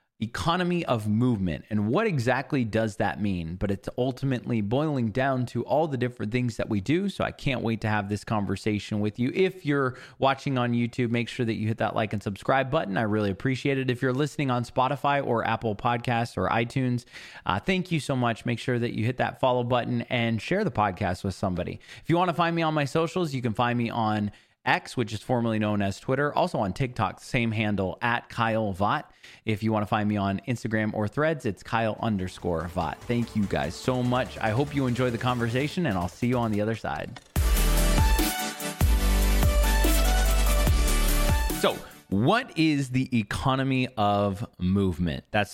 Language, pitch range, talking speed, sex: English, 105-130 Hz, 200 wpm, male